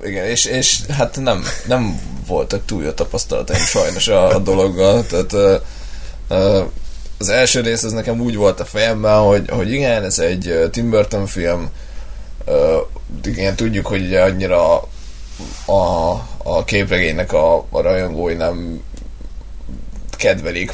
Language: Hungarian